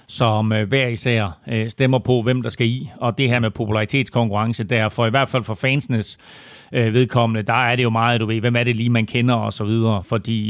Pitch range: 115-130 Hz